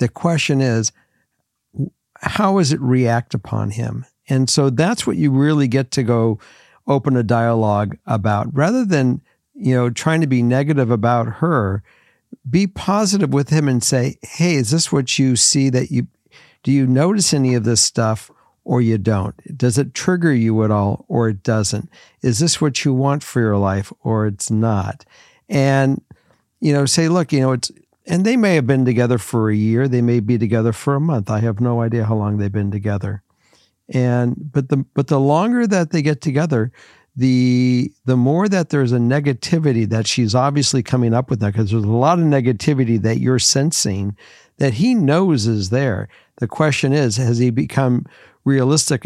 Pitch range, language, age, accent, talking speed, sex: 115-145 Hz, English, 50-69, American, 190 wpm, male